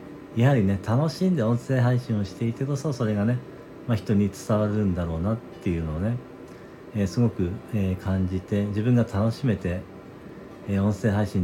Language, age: Japanese, 40-59